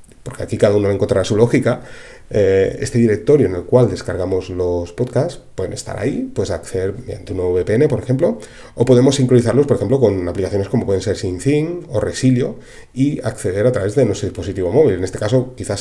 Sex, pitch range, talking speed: male, 95-120 Hz, 195 wpm